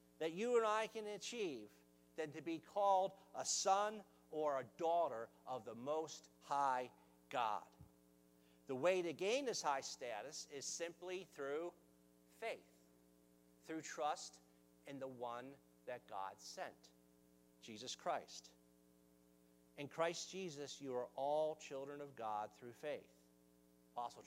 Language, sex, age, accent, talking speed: English, male, 50-69, American, 130 wpm